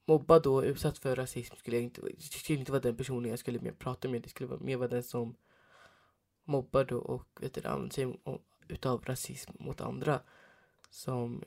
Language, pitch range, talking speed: Swedish, 125-140 Hz, 190 wpm